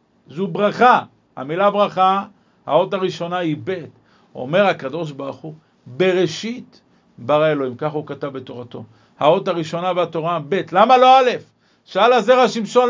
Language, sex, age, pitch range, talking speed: Hebrew, male, 50-69, 160-215 Hz, 135 wpm